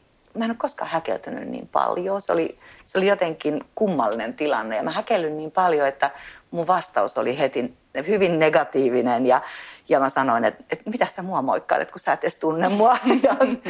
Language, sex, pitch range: Finnish, female, 150-215 Hz